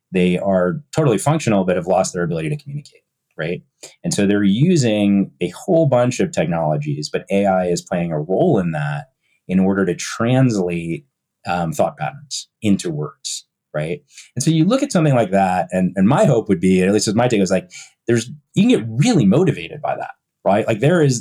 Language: English